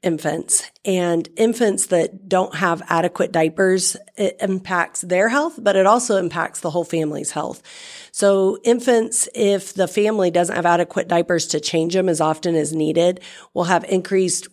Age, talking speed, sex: 40-59, 160 wpm, female